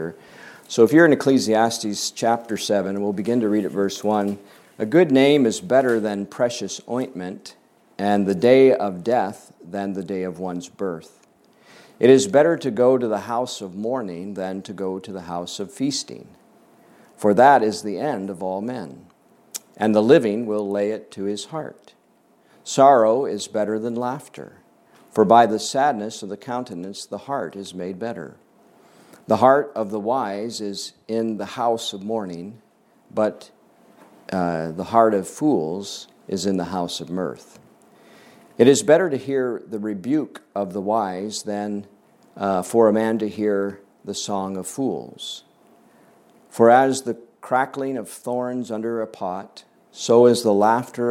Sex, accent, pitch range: male, American, 100-120 Hz